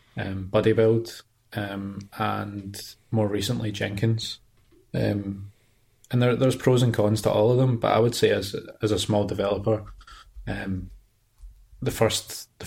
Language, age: English, 20-39